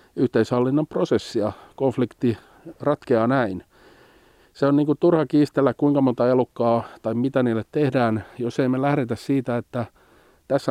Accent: native